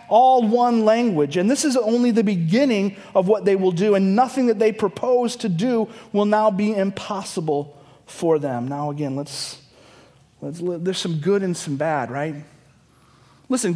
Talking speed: 180 wpm